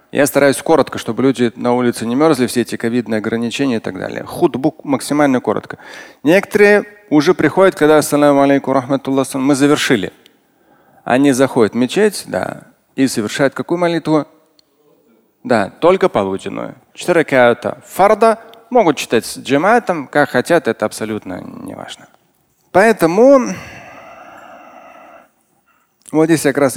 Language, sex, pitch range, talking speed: Russian, male, 135-185 Hz, 125 wpm